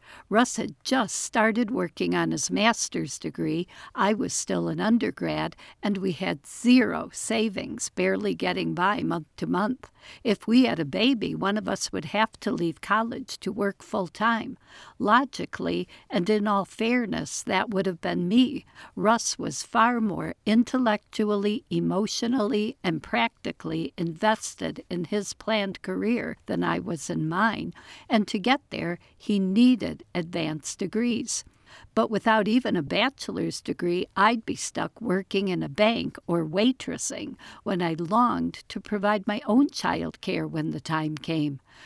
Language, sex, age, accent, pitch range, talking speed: English, female, 60-79, American, 180-230 Hz, 150 wpm